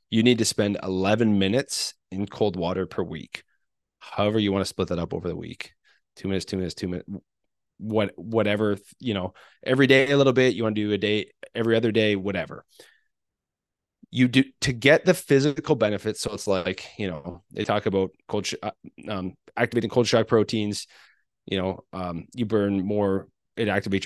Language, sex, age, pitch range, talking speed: English, male, 30-49, 100-125 Hz, 190 wpm